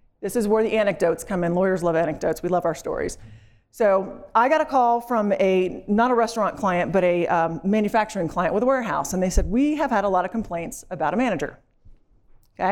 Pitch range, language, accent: 180-255 Hz, English, American